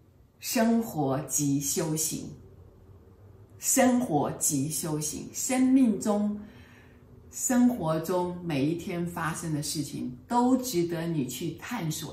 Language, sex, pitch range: Chinese, female, 130-175 Hz